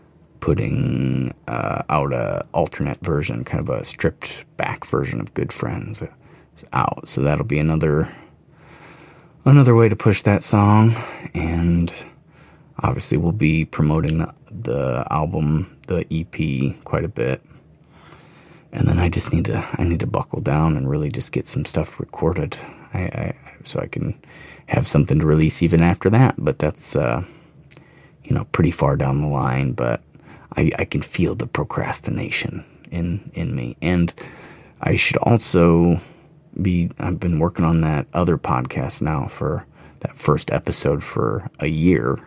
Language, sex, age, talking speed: English, male, 30-49, 155 wpm